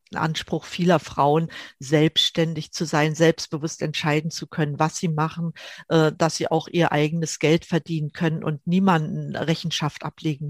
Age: 50-69